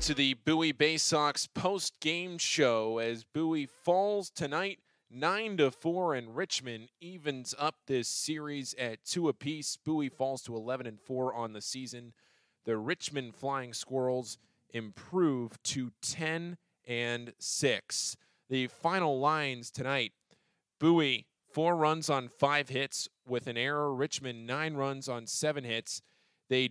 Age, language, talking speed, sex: 20-39, English, 125 wpm, male